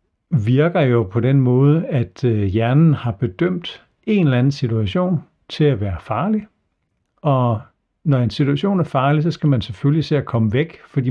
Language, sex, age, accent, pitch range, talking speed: Danish, male, 60-79, native, 110-150 Hz, 175 wpm